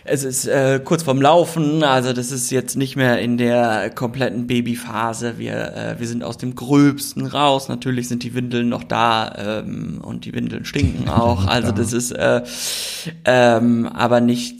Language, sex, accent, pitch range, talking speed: German, male, German, 115-135 Hz, 175 wpm